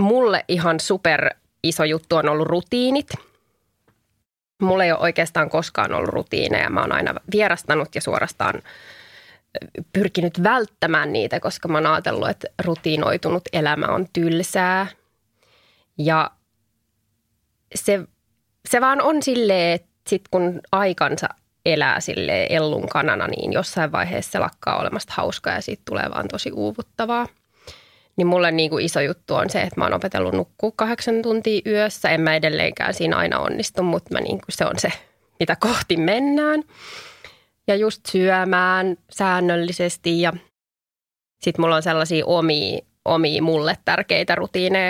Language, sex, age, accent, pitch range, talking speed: Finnish, female, 20-39, native, 160-200 Hz, 140 wpm